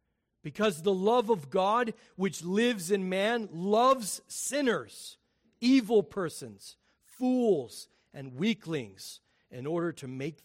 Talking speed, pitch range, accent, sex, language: 115 wpm, 160-240 Hz, American, male, English